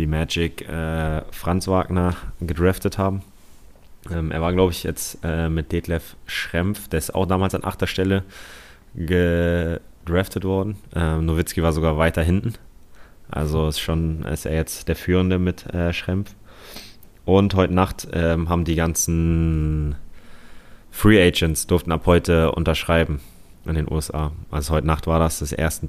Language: German